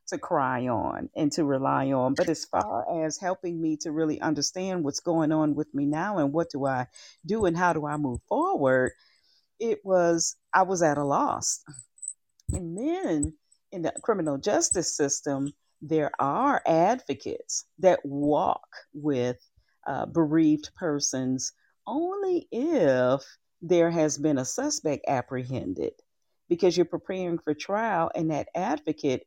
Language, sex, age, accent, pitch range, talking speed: English, female, 40-59, American, 145-185 Hz, 150 wpm